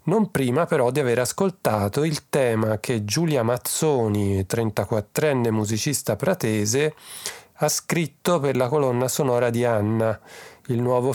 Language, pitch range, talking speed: Italian, 110-135 Hz, 130 wpm